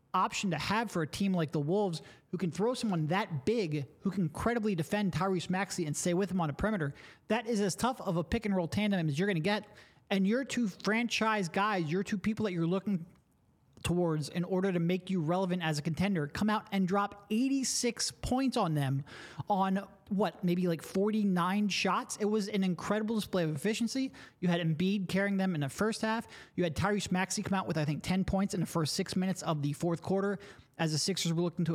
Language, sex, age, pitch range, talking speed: English, male, 30-49, 160-205 Hz, 225 wpm